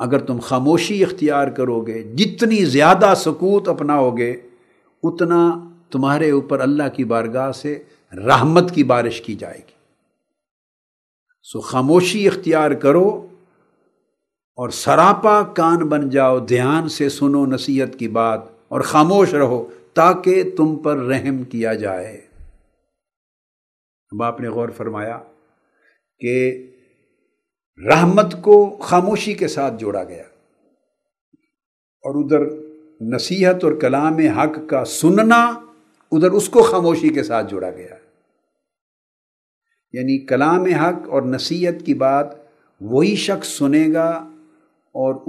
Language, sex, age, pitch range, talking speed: Urdu, male, 50-69, 130-180 Hz, 120 wpm